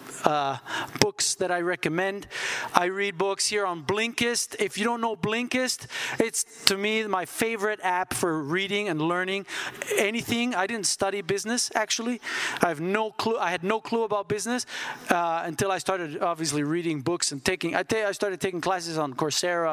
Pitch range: 170-215 Hz